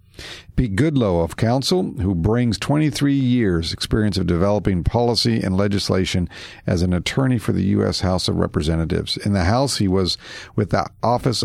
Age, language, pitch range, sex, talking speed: 50-69, English, 90-115 Hz, male, 165 wpm